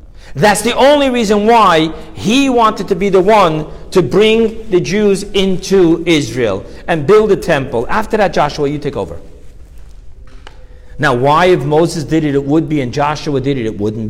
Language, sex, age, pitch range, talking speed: English, male, 50-69, 145-215 Hz, 180 wpm